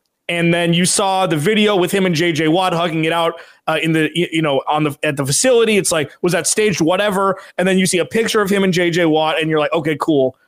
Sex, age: male, 30-49